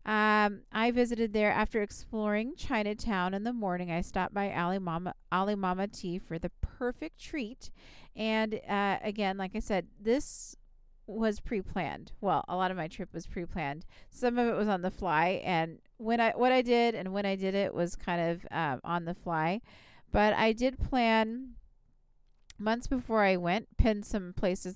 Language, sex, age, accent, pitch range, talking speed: English, female, 40-59, American, 175-220 Hz, 180 wpm